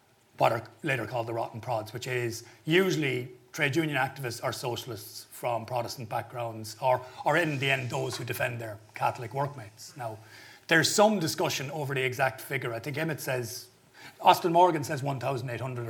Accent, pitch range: Irish, 120-150 Hz